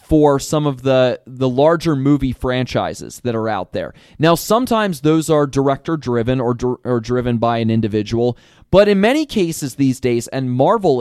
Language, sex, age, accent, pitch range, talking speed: English, male, 30-49, American, 115-145 Hz, 175 wpm